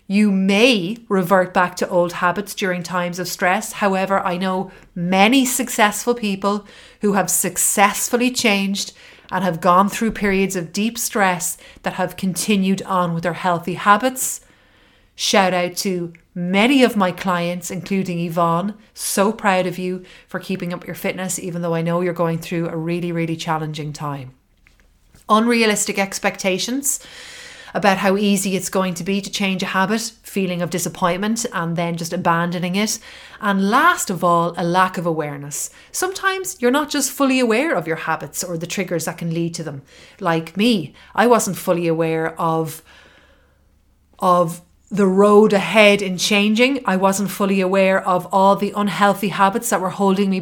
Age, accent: 30-49, Irish